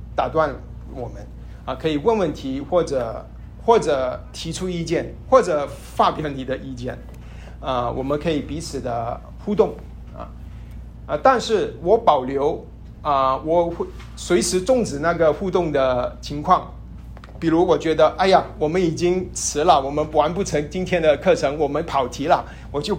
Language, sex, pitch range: Chinese, male, 130-175 Hz